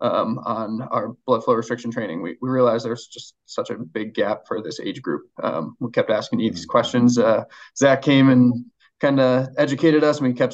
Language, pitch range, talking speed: English, 120-145 Hz, 215 wpm